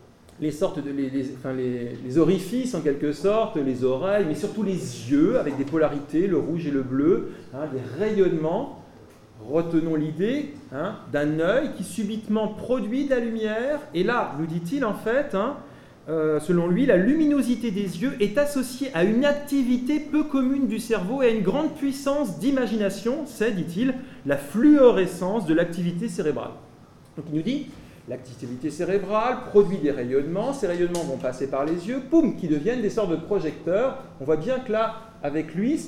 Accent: French